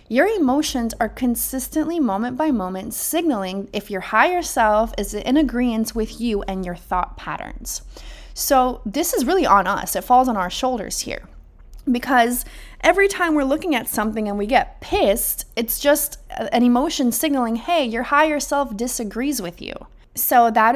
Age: 30-49